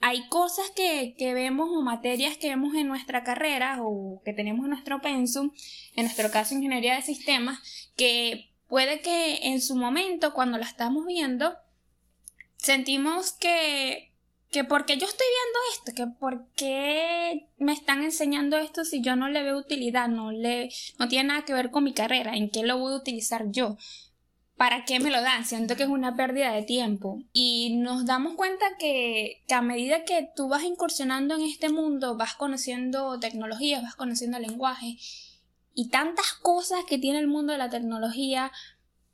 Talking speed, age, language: 175 wpm, 10-29, Spanish